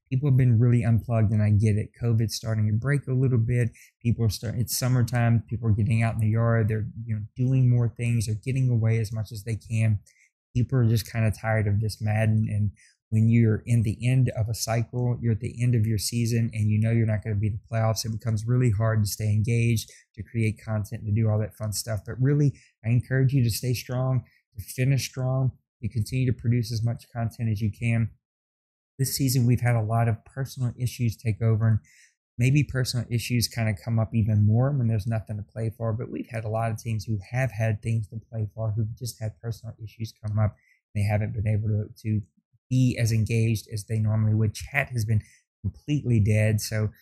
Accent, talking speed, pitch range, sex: American, 235 wpm, 110-120 Hz, male